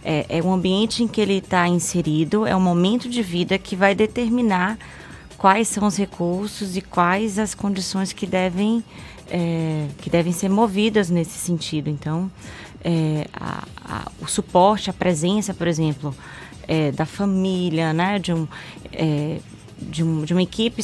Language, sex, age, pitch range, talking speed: Portuguese, female, 20-39, 165-205 Hz, 130 wpm